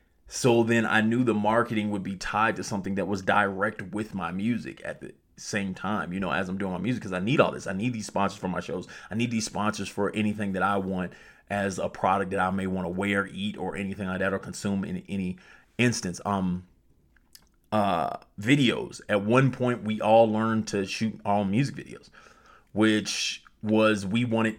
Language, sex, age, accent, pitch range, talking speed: English, male, 30-49, American, 100-110 Hz, 210 wpm